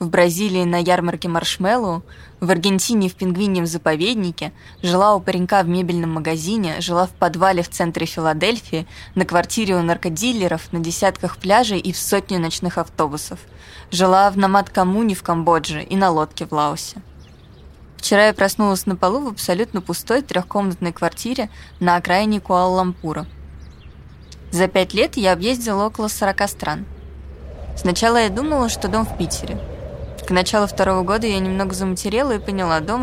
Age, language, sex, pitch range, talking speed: 20-39, Russian, female, 170-200 Hz, 150 wpm